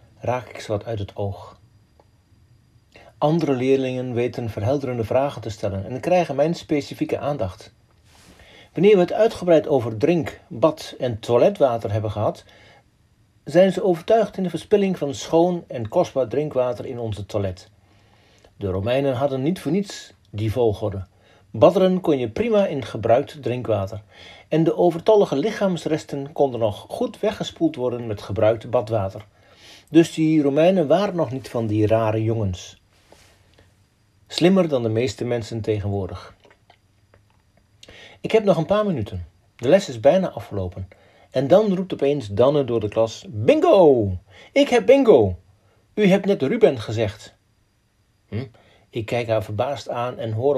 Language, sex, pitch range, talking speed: Dutch, male, 105-155 Hz, 145 wpm